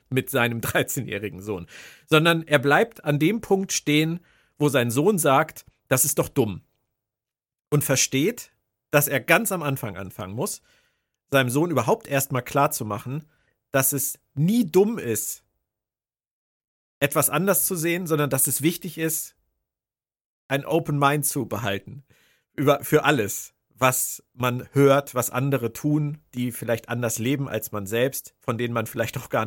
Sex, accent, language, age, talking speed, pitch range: male, German, German, 50-69, 150 wpm, 120-160 Hz